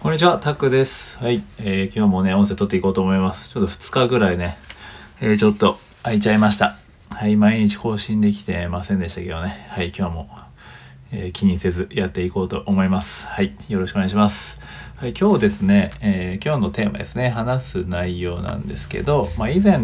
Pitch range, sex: 90-125 Hz, male